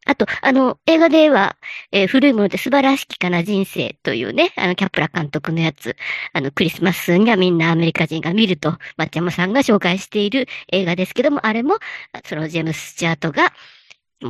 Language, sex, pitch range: Japanese, male, 195-295 Hz